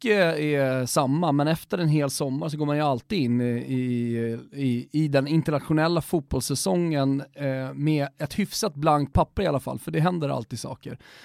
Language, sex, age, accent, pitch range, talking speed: Swedish, male, 30-49, native, 135-170 Hz, 175 wpm